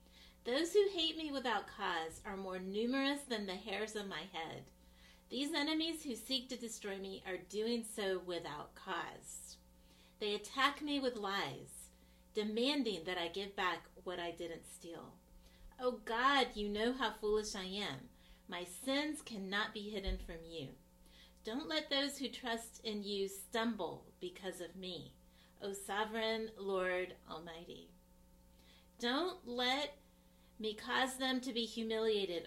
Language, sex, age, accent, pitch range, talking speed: English, female, 40-59, American, 165-235 Hz, 150 wpm